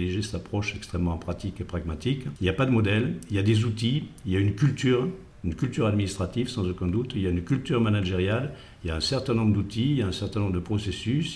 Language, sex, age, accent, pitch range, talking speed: French, male, 60-79, French, 90-110 Hz, 260 wpm